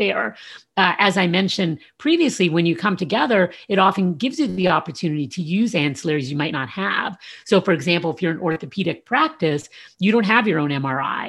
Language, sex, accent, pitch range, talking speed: English, female, American, 155-205 Hz, 195 wpm